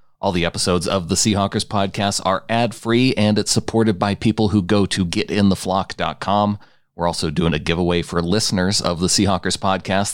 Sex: male